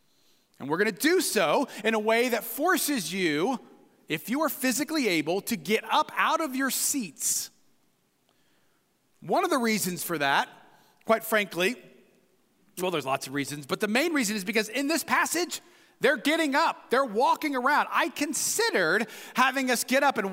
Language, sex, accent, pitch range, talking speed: English, male, American, 170-255 Hz, 175 wpm